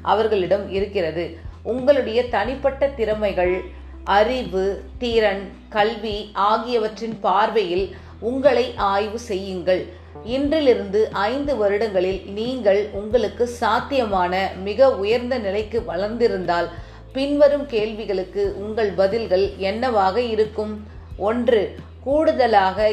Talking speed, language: 80 wpm, Tamil